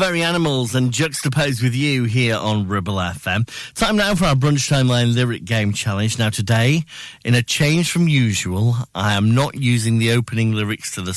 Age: 40-59